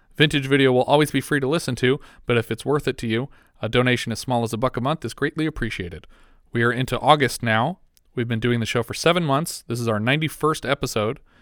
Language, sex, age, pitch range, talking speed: English, male, 40-59, 115-140 Hz, 240 wpm